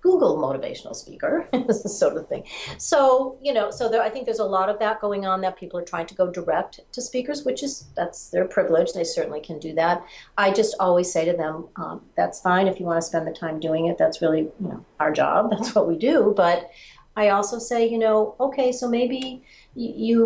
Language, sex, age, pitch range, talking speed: English, female, 40-59, 170-240 Hz, 230 wpm